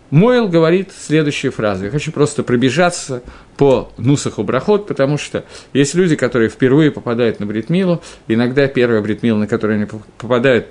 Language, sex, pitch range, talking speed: Russian, male, 115-160 Hz, 150 wpm